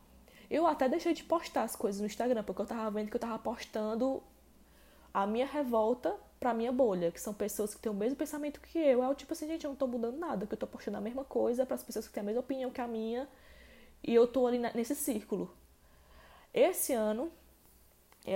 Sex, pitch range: female, 190-240 Hz